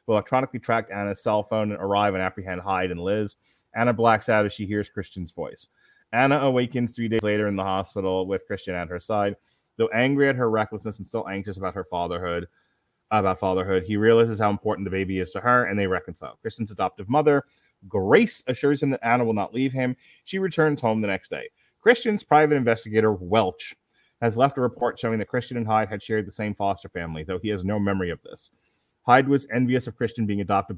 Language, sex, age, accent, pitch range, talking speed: English, male, 30-49, American, 100-125 Hz, 215 wpm